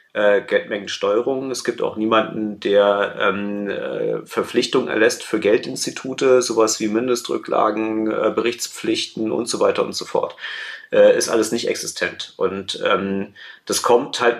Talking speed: 135 wpm